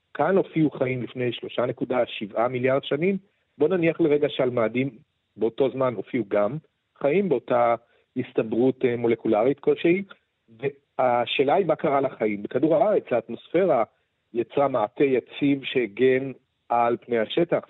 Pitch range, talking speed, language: 115-145 Hz, 120 wpm, Hebrew